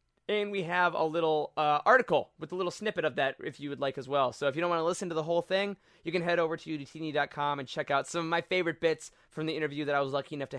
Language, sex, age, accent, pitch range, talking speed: English, male, 20-39, American, 150-210 Hz, 300 wpm